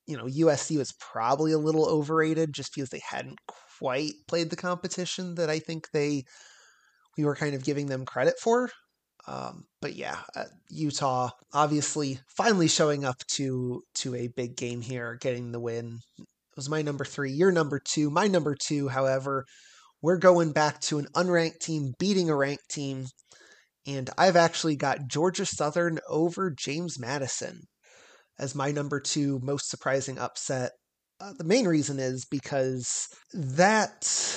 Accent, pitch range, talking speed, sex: American, 135-160 Hz, 160 wpm, male